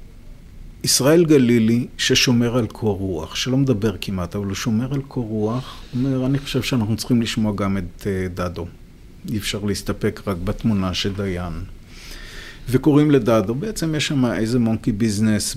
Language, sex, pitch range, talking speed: Hebrew, male, 100-130 Hz, 150 wpm